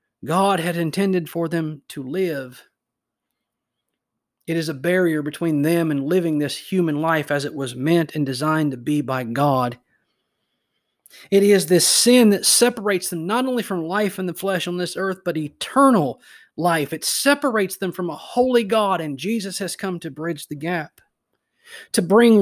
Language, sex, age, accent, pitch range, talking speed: English, male, 30-49, American, 145-195 Hz, 175 wpm